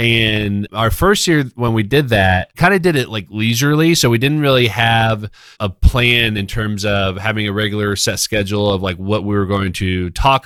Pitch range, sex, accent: 95-110 Hz, male, American